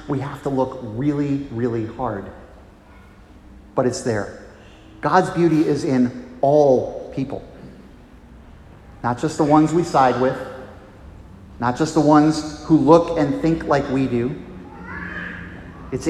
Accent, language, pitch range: American, English, 100-155 Hz